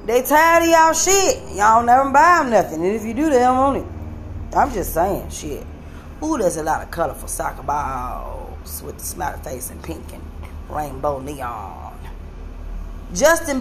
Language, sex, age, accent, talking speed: English, female, 20-39, American, 175 wpm